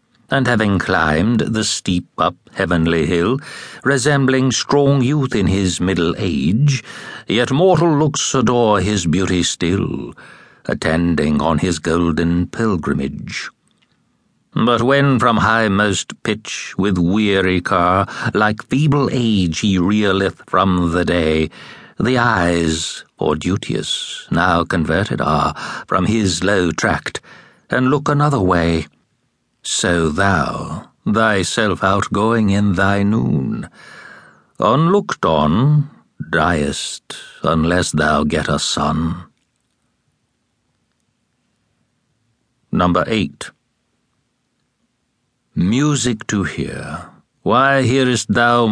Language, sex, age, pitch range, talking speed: English, male, 60-79, 85-125 Hz, 100 wpm